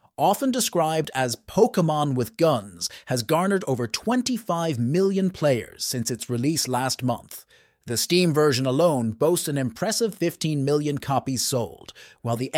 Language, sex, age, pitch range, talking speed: English, male, 30-49, 120-175 Hz, 145 wpm